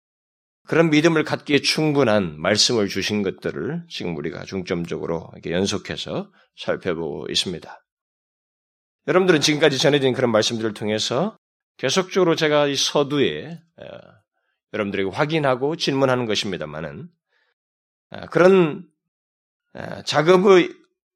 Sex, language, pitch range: male, Korean, 125-165 Hz